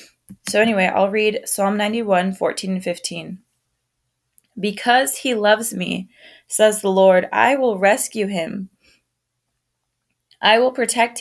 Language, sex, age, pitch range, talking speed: English, female, 20-39, 180-215 Hz, 130 wpm